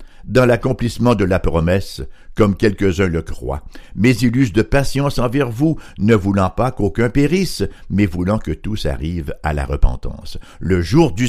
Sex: male